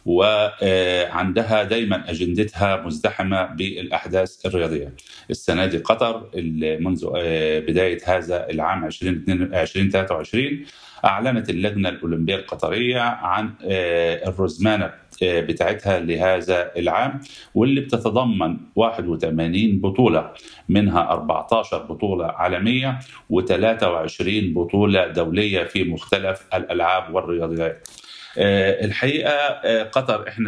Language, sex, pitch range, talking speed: Arabic, male, 90-110 Hz, 85 wpm